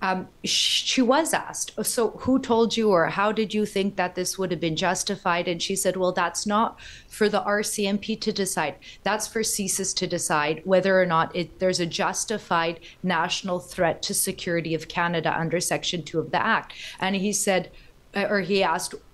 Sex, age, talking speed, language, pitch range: female, 30-49, 190 wpm, English, 175-205 Hz